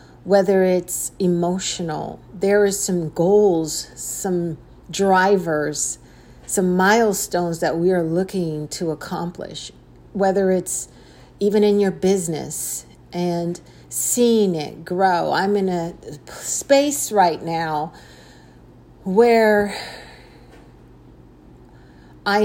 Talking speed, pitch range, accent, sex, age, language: 95 wpm, 160-195 Hz, American, female, 40-59, English